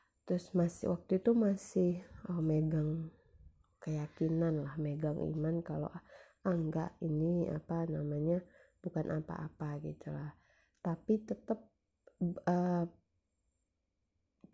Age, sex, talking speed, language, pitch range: 20-39, female, 95 wpm, Indonesian, 150-175 Hz